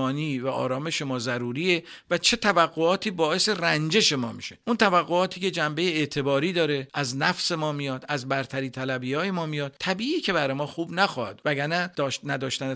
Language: Persian